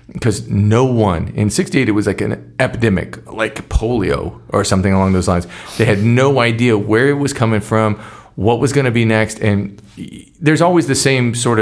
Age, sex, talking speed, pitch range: 40-59, male, 195 wpm, 95-115 Hz